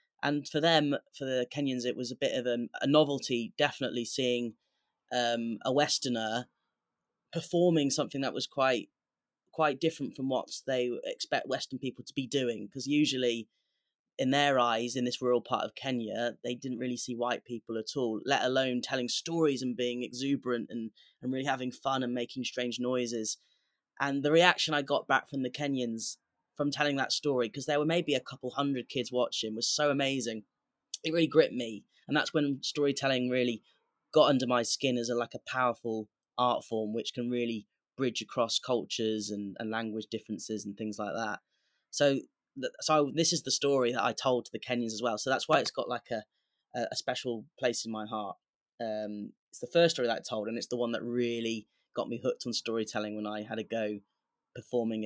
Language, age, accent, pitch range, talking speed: English, 10-29, British, 115-140 Hz, 195 wpm